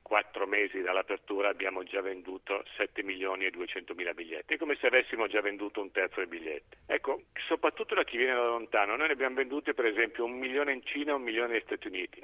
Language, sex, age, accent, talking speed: Italian, male, 50-69, native, 220 wpm